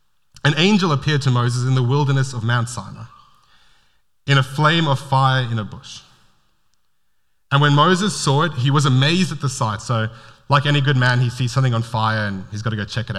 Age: 30-49